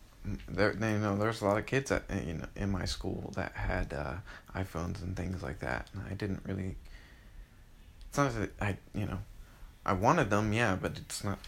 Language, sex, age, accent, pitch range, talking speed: English, male, 20-39, American, 90-105 Hz, 205 wpm